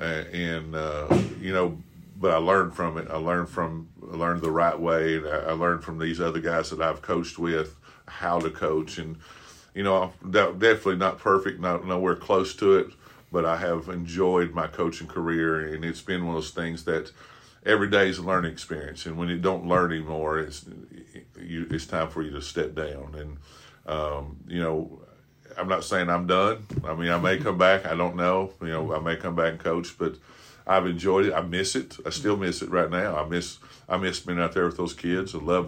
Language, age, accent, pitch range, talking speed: English, 50-69, American, 80-90 Hz, 215 wpm